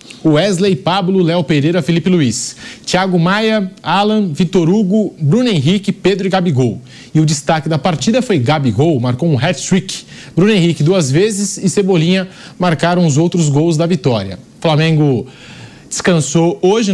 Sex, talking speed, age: male, 150 wpm, 20-39